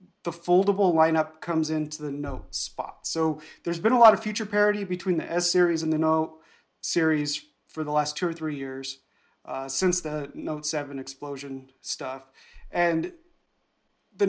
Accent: American